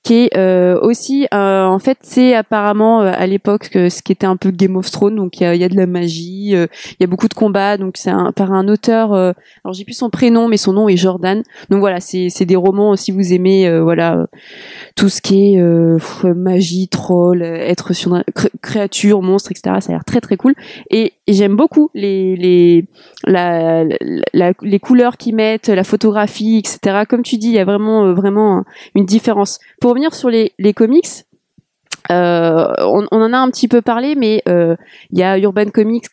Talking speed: 215 wpm